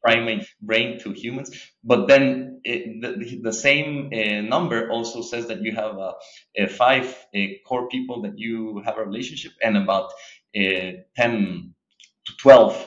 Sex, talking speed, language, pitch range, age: male, 155 wpm, English, 100-125 Hz, 30-49